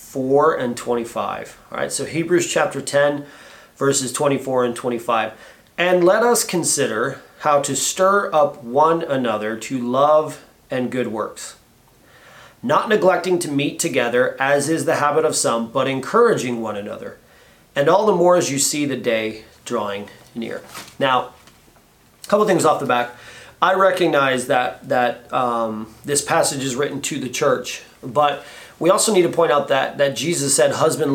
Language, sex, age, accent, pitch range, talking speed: English, male, 30-49, American, 130-170 Hz, 160 wpm